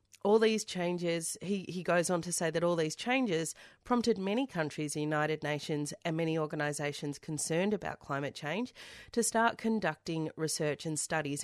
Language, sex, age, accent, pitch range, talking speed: English, female, 30-49, Australian, 150-190 Hz, 170 wpm